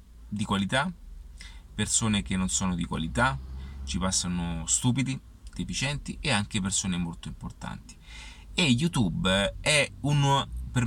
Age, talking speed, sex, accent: 30-49, 120 wpm, male, native